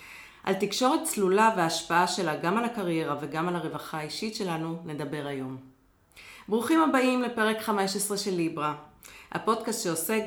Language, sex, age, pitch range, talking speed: Hebrew, female, 40-59, 165-210 Hz, 135 wpm